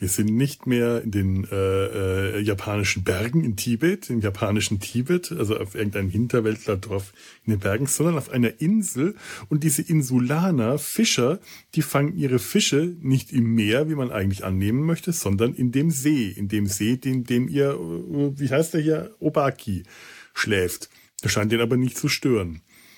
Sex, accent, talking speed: male, German, 170 wpm